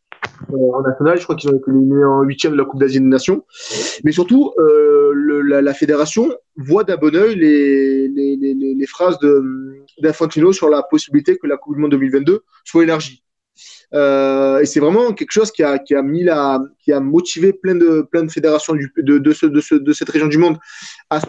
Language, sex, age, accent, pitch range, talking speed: French, male, 20-39, French, 140-195 Hz, 220 wpm